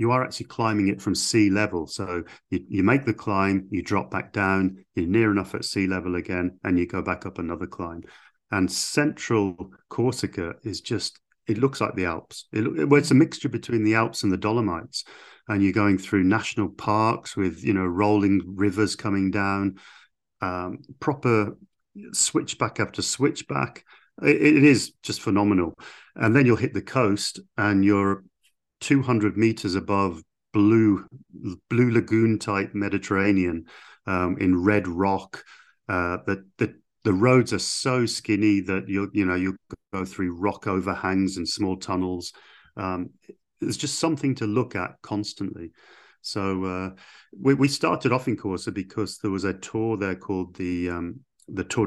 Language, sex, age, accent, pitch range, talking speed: English, male, 40-59, British, 90-110 Hz, 160 wpm